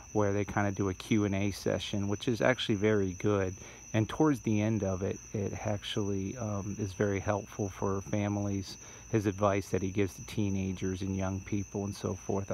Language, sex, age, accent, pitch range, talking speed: English, male, 40-59, American, 100-110 Hz, 200 wpm